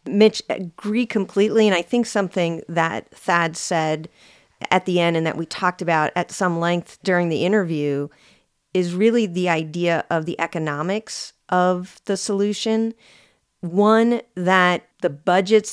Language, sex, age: English, female, 40-59